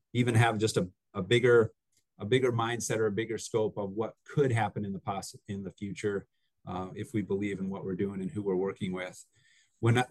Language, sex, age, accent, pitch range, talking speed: English, male, 30-49, American, 105-125 Hz, 225 wpm